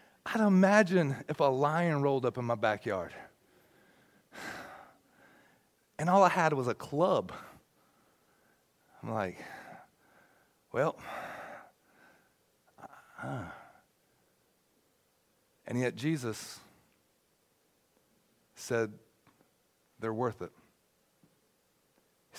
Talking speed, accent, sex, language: 80 wpm, American, male, English